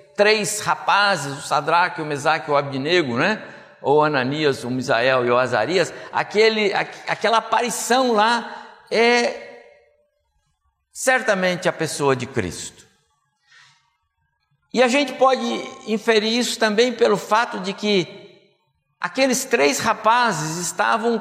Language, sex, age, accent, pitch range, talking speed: Portuguese, male, 60-79, Brazilian, 180-245 Hz, 120 wpm